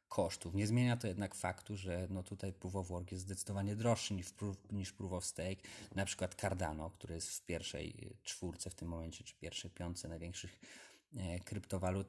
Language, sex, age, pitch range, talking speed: Polish, male, 30-49, 90-100 Hz, 175 wpm